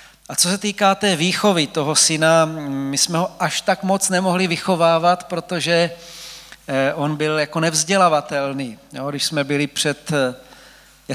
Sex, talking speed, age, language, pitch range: male, 145 wpm, 40-59, Czech, 140-185 Hz